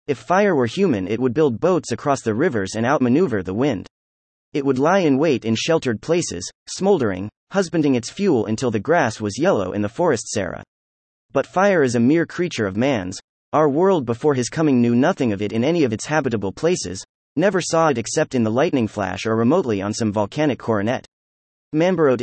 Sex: male